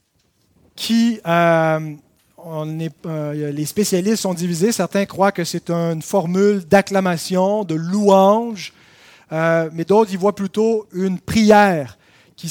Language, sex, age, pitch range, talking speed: French, male, 30-49, 160-205 Hz, 130 wpm